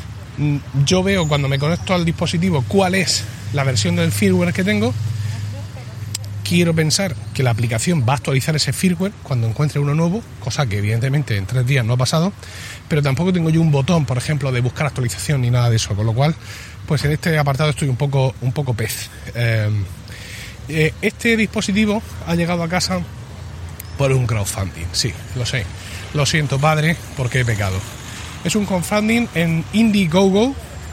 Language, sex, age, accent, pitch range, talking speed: Spanish, male, 30-49, Spanish, 115-185 Hz, 175 wpm